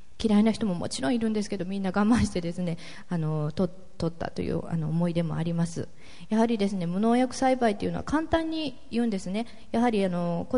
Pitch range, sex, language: 175-235 Hz, female, Japanese